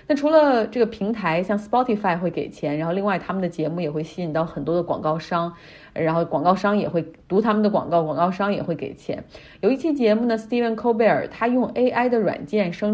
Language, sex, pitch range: Chinese, female, 165-210 Hz